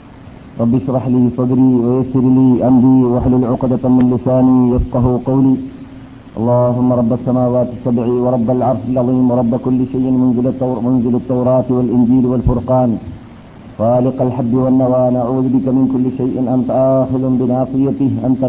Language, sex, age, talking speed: Malayalam, male, 50-69, 135 wpm